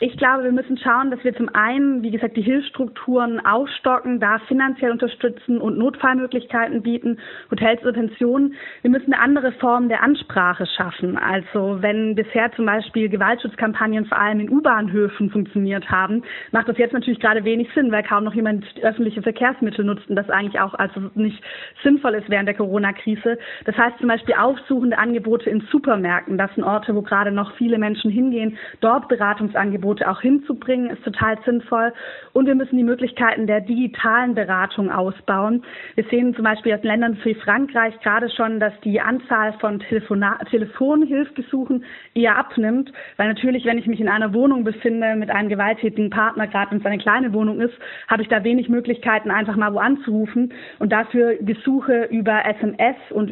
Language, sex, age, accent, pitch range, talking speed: German, female, 20-39, German, 210-245 Hz, 170 wpm